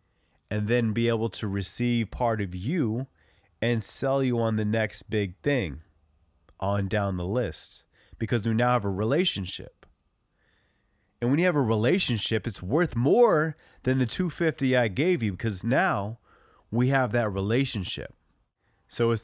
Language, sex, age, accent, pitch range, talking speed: English, male, 30-49, American, 95-140 Hz, 155 wpm